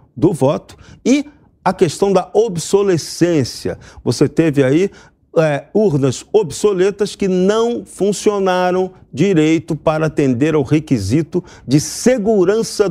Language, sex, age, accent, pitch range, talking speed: Portuguese, male, 50-69, Brazilian, 140-195 Hz, 105 wpm